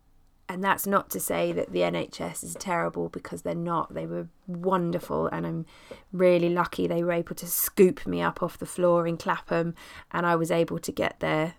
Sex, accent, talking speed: female, British, 200 wpm